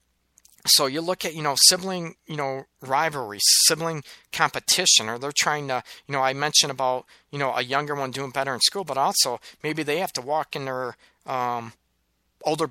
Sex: male